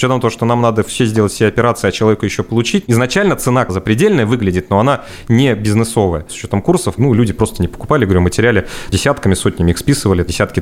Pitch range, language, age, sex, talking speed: 100-120 Hz, Russian, 30-49, male, 205 wpm